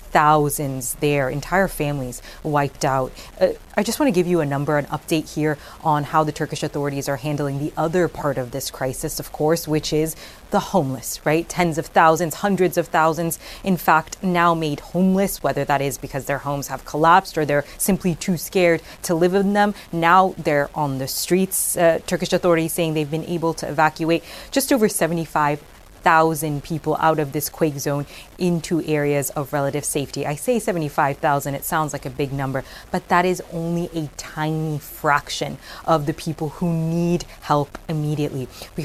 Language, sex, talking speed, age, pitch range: English, female, 180 wpm, 20-39, 145-175 Hz